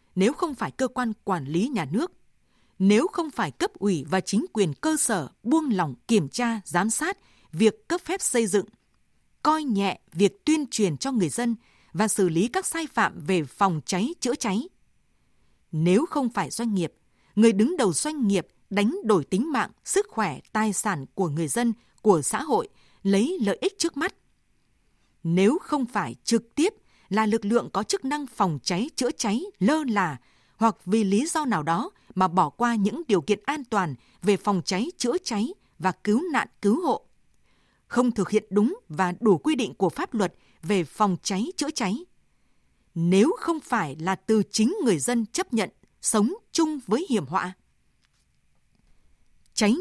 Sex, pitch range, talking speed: female, 190-265 Hz, 180 wpm